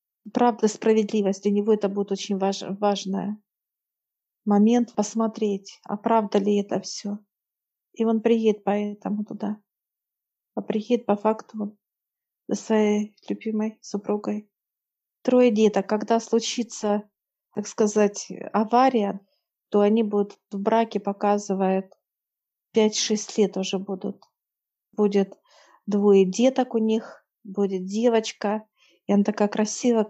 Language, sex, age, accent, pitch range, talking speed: Russian, female, 40-59, native, 205-225 Hz, 115 wpm